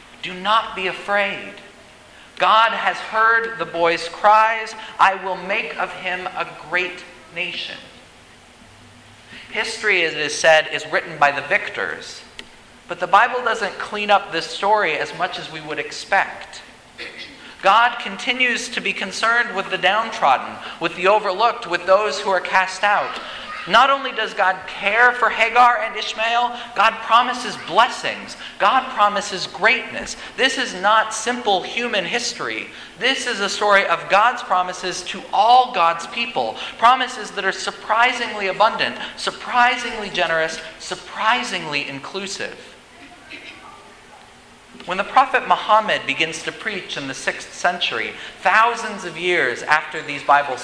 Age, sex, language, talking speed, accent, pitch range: 40-59, male, English, 140 wpm, American, 180-225 Hz